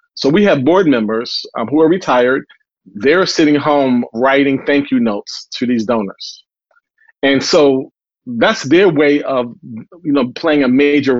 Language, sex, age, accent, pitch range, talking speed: English, male, 40-59, American, 135-165 Hz, 160 wpm